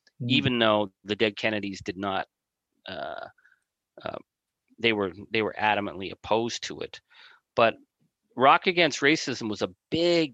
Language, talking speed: English, 140 wpm